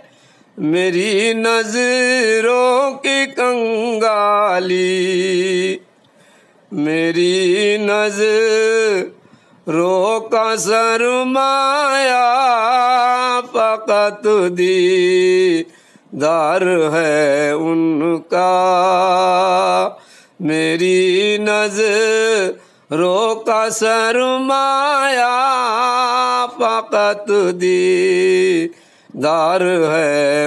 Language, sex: Urdu, male